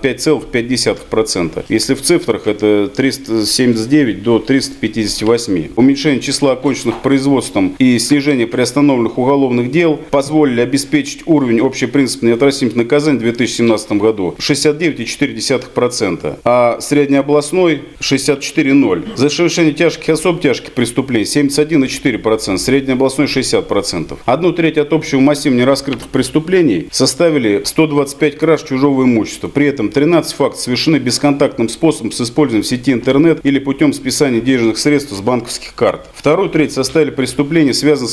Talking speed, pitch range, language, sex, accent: 120 wpm, 120-150 Hz, Russian, male, native